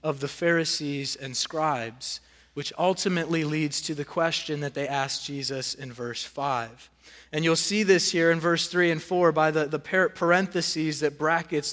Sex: male